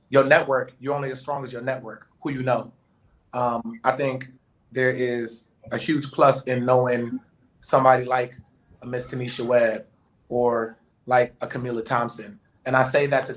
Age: 30-49